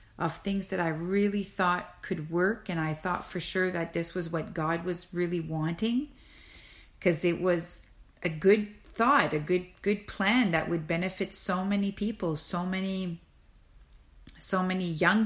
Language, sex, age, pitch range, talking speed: English, female, 40-59, 165-205 Hz, 165 wpm